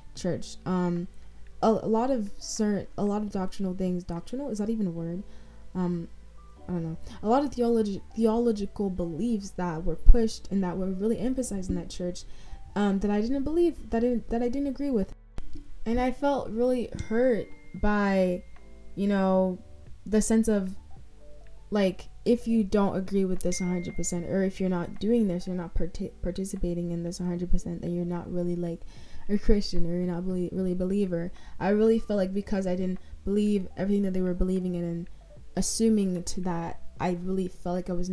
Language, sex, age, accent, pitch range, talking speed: English, female, 20-39, American, 180-215 Hz, 190 wpm